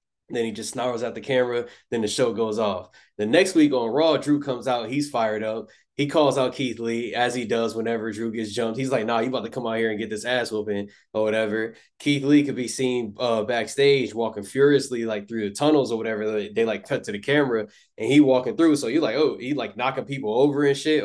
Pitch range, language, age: 115-140 Hz, English, 20-39